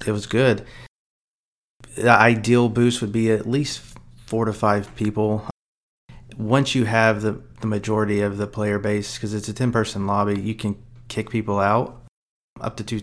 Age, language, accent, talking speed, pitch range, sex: 30-49, English, American, 170 wpm, 105-120 Hz, male